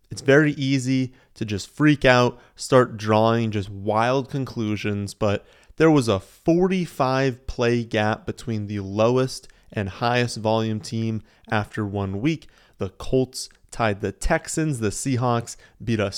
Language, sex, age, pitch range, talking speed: English, male, 30-49, 105-130 Hz, 140 wpm